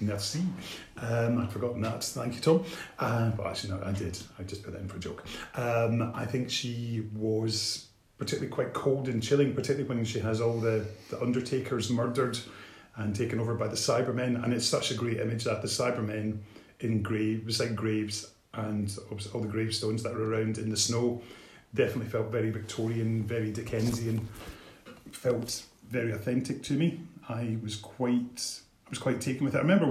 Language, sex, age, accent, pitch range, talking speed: English, male, 30-49, British, 110-125 Hz, 185 wpm